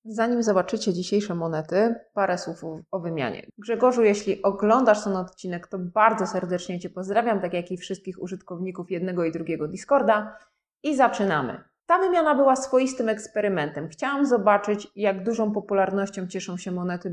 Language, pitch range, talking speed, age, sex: Polish, 185-225 Hz, 145 wpm, 20-39, female